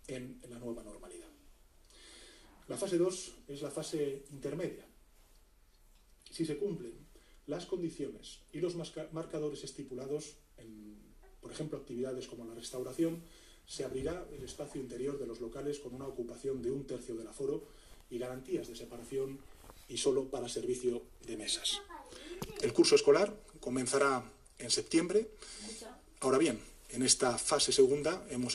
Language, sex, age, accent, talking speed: Spanish, male, 30-49, Spanish, 140 wpm